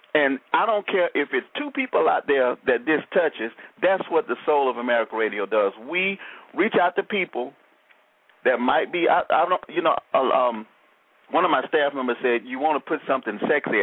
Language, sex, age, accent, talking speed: English, male, 40-59, American, 205 wpm